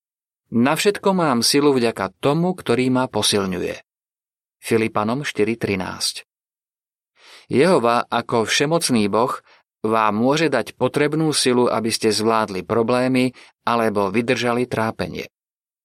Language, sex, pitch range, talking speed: Slovak, male, 110-135 Hz, 100 wpm